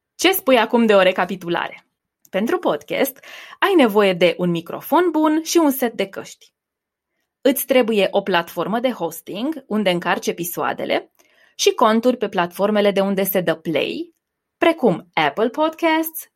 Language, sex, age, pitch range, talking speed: Romanian, female, 20-39, 185-280 Hz, 145 wpm